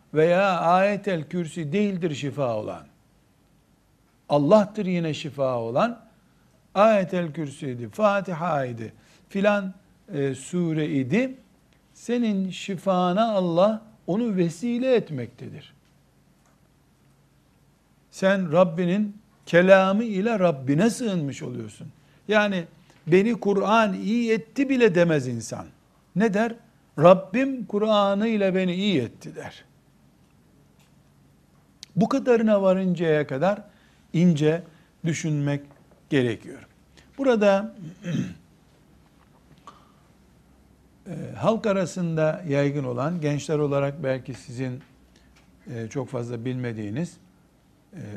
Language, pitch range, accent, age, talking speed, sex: Turkish, 135-195 Hz, native, 60-79, 85 wpm, male